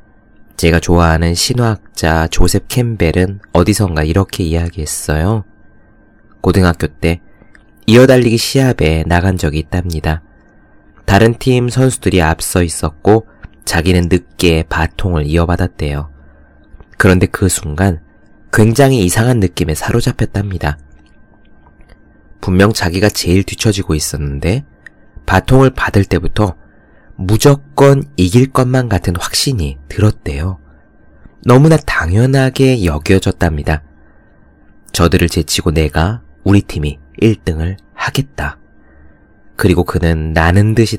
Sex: male